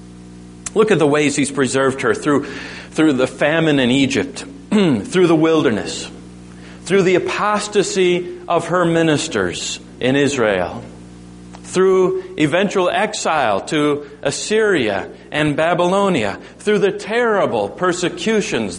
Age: 40-59